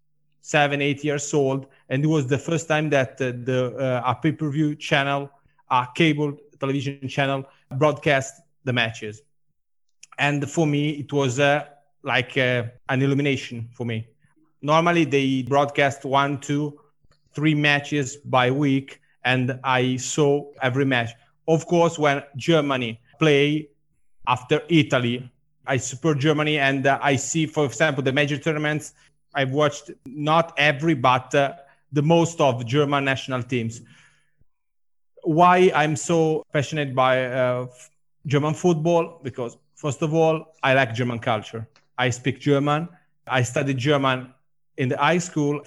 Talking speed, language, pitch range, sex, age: 140 wpm, English, 135-155 Hz, male, 30-49